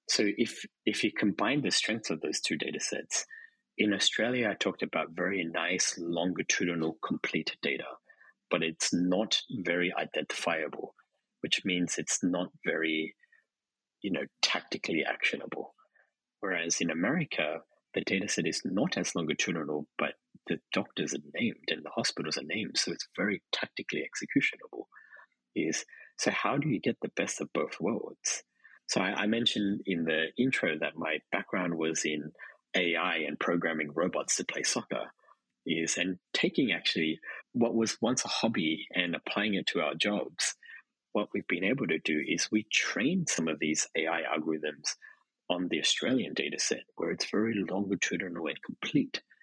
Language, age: English, 30-49